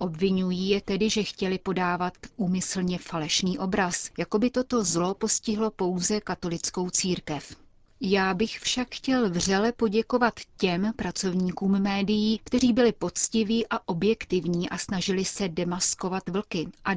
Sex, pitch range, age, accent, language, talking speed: female, 175-205 Hz, 30-49, native, Czech, 130 wpm